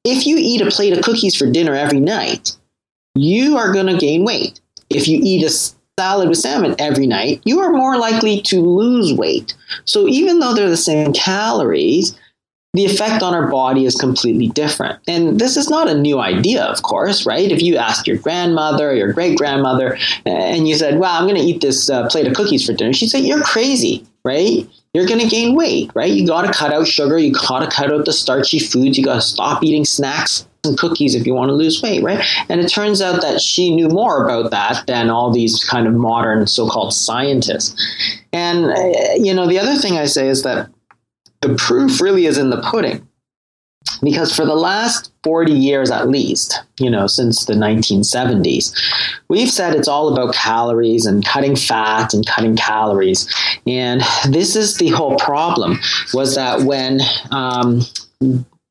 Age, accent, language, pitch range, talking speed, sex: 30-49, American, English, 130-205 Hz, 195 wpm, male